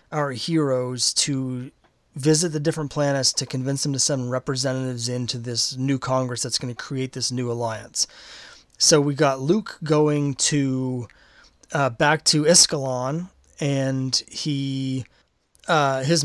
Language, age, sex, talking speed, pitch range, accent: English, 30-49, male, 140 wpm, 130-155 Hz, American